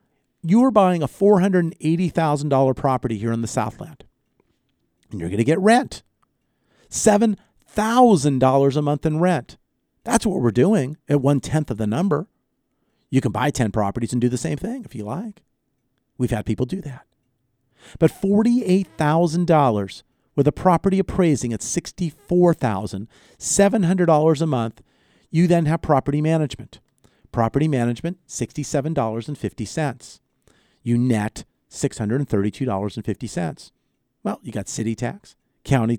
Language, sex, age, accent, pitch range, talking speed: English, male, 50-69, American, 115-170 Hz, 125 wpm